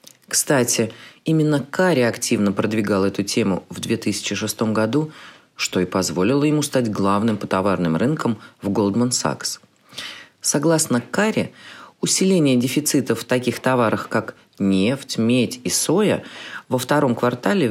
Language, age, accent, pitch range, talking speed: Russian, 30-49, native, 115-155 Hz, 125 wpm